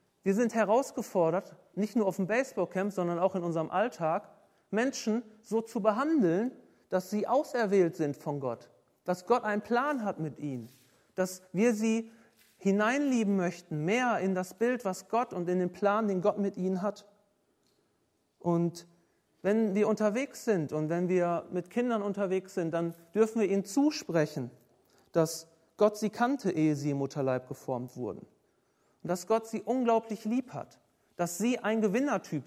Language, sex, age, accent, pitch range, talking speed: German, male, 40-59, German, 170-220 Hz, 160 wpm